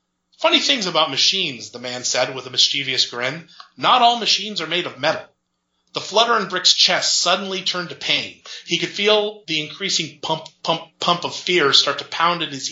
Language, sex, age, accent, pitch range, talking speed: English, male, 30-49, American, 135-180 Hz, 200 wpm